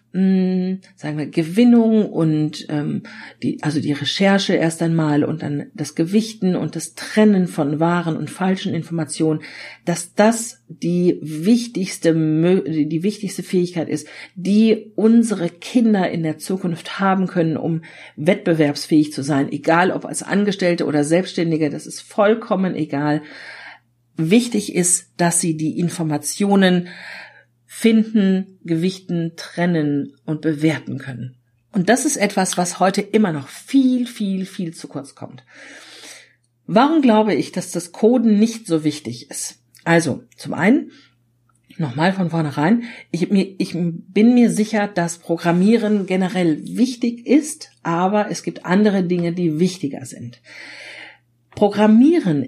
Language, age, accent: German, 50-69, German